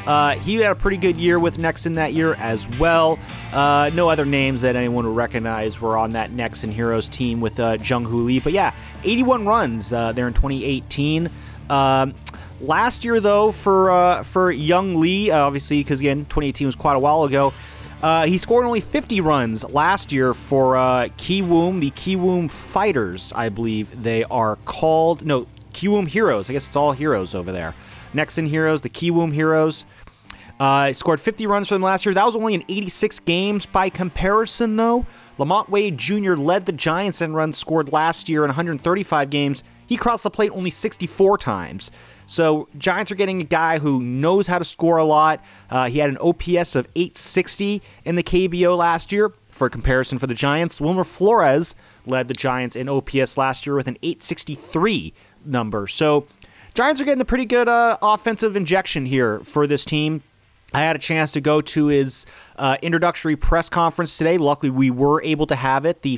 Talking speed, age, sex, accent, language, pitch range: 190 wpm, 30-49, male, American, English, 130-175 Hz